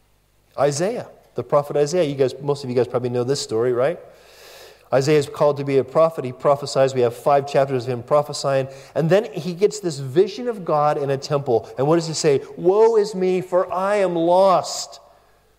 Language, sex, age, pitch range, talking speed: English, male, 40-59, 140-200 Hz, 210 wpm